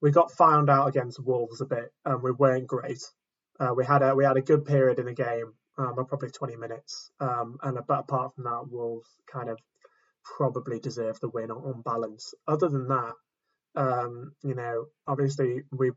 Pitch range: 120-140 Hz